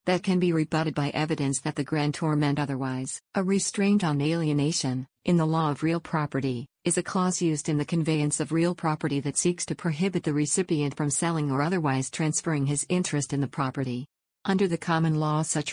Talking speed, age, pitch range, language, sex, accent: 200 wpm, 50-69, 145-165 Hz, English, female, American